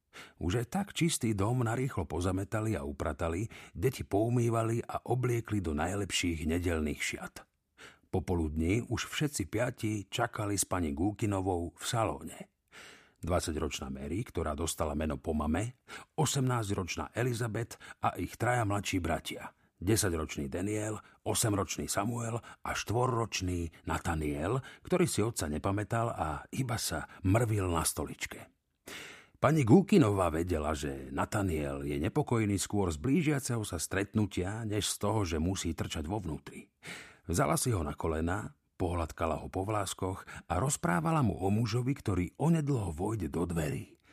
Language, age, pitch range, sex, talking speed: Slovak, 50-69, 85-120 Hz, male, 130 wpm